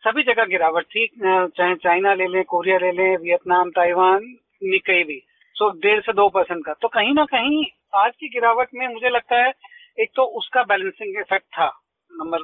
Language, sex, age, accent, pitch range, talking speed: Hindi, male, 40-59, native, 195-260 Hz, 205 wpm